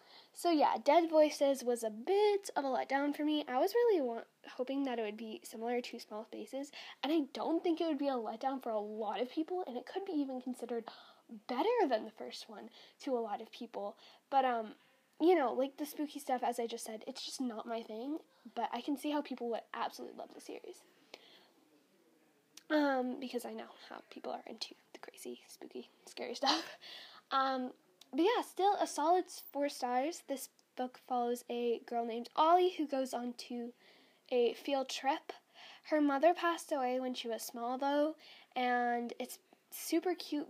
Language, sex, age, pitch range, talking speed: English, female, 10-29, 235-320 Hz, 195 wpm